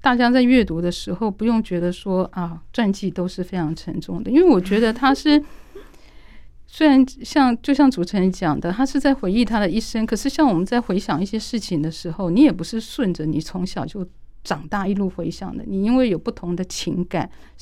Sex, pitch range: female, 175-235 Hz